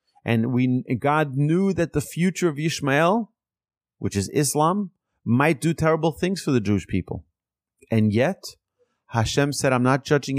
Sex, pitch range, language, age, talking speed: male, 105-155 Hz, English, 30-49, 155 wpm